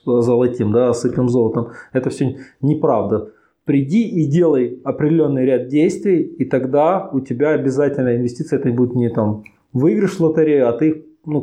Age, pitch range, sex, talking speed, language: 20-39, 120-155 Hz, male, 150 wpm, Russian